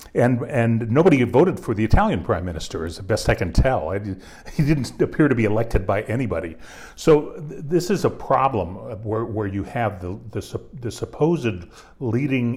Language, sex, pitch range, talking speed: English, male, 100-135 Hz, 180 wpm